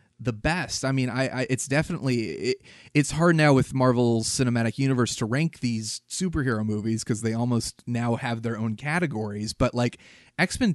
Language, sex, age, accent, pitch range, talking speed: English, male, 30-49, American, 115-135 Hz, 175 wpm